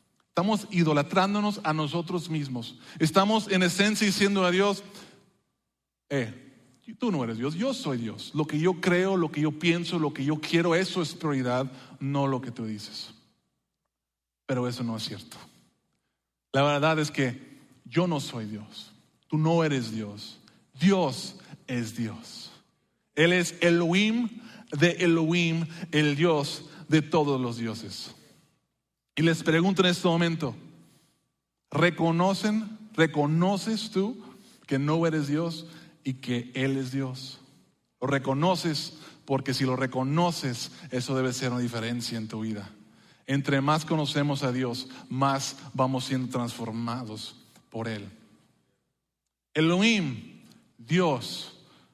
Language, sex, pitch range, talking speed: English, male, 130-175 Hz, 135 wpm